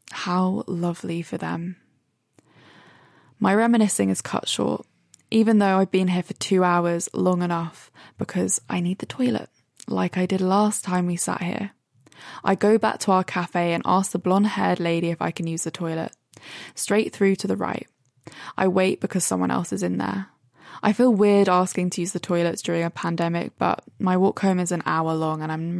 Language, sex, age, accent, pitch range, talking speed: English, female, 20-39, British, 165-205 Hz, 195 wpm